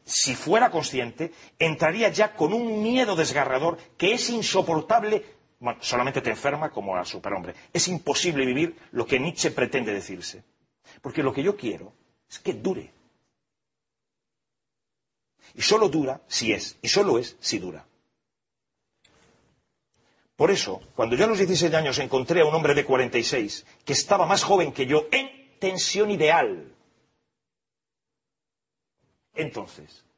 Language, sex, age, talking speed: Spanish, male, 40-59, 135 wpm